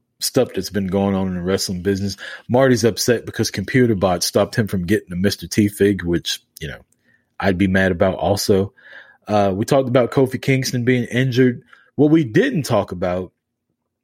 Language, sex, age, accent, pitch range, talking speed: English, male, 30-49, American, 100-135 Hz, 180 wpm